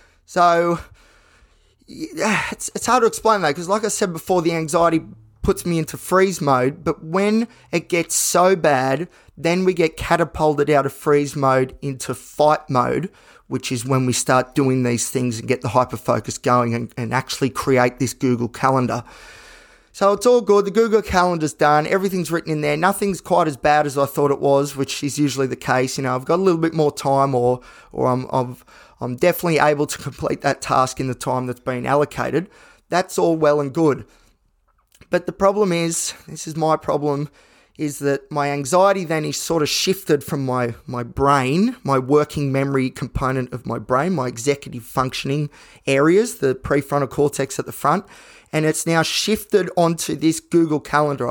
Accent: Australian